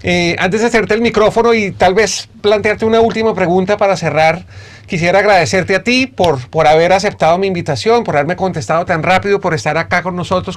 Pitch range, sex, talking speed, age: 160-190 Hz, male, 200 wpm, 30-49